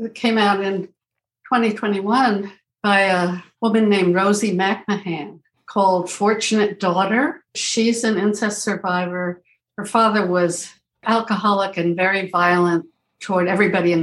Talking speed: 115 wpm